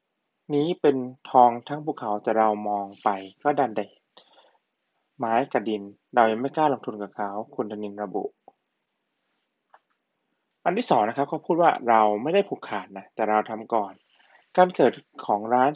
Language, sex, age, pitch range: Thai, male, 20-39, 115-155 Hz